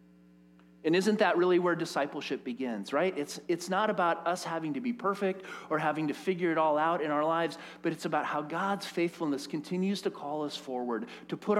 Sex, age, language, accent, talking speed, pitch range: male, 40-59, English, American, 205 wpm, 145-200 Hz